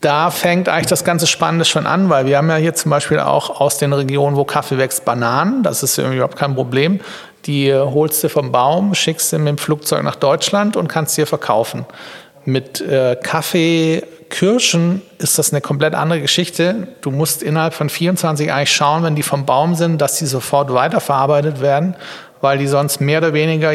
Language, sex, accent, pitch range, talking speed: German, male, German, 140-165 Hz, 195 wpm